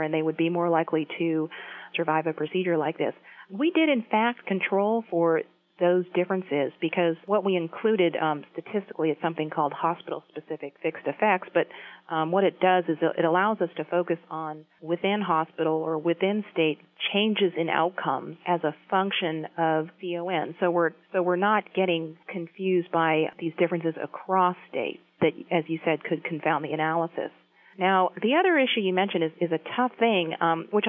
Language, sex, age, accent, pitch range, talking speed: English, female, 40-59, American, 160-190 Hz, 170 wpm